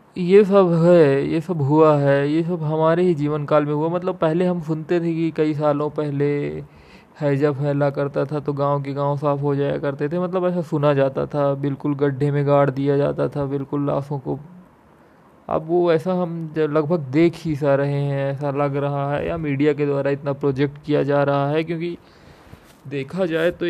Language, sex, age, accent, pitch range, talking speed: Hindi, male, 20-39, native, 140-155 Hz, 205 wpm